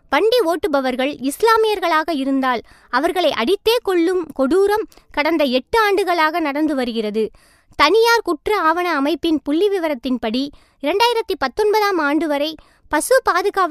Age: 20-39